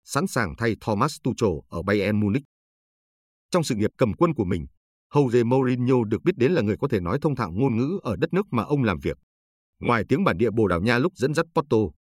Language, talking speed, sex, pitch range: Vietnamese, 235 wpm, male, 100-135 Hz